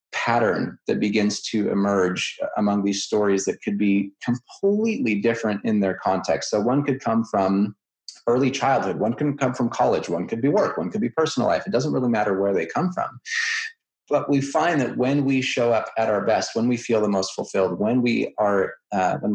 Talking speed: 195 wpm